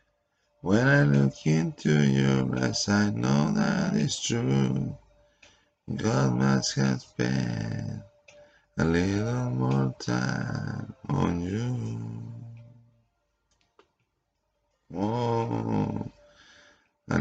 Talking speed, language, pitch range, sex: 80 wpm, Spanish, 70-115 Hz, male